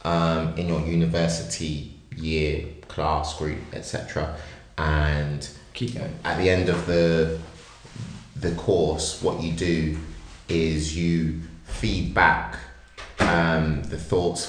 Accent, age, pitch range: British, 30-49, 75-85 Hz